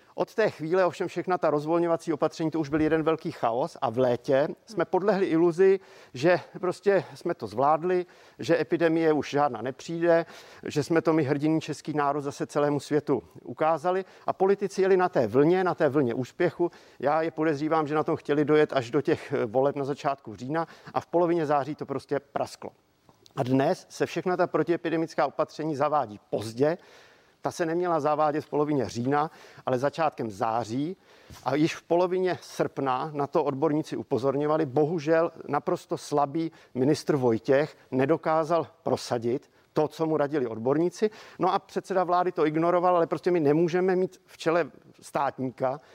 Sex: male